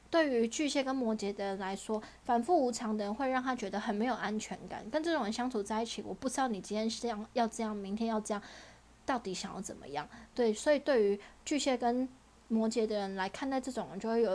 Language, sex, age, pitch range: Chinese, female, 20-39, 205-250 Hz